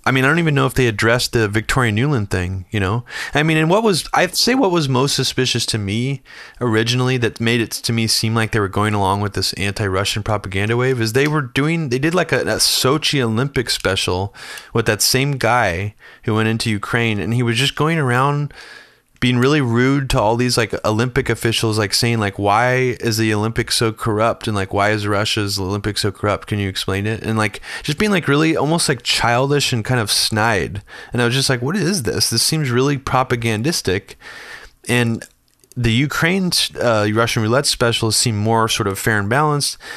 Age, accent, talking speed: 20-39, American, 210 wpm